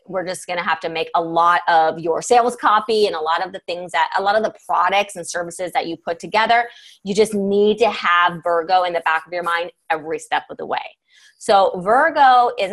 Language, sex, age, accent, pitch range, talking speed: English, female, 20-39, American, 170-250 Hz, 235 wpm